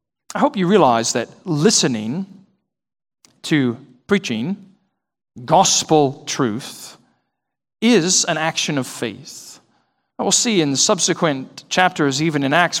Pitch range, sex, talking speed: 130-180 Hz, male, 110 wpm